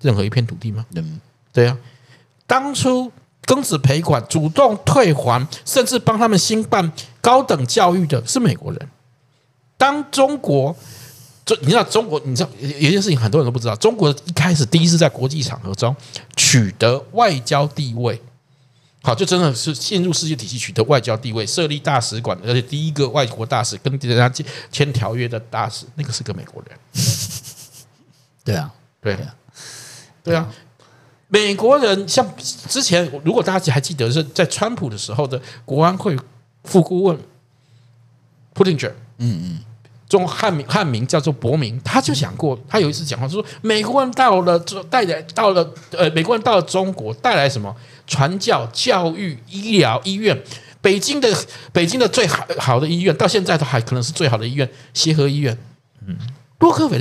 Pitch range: 125-175 Hz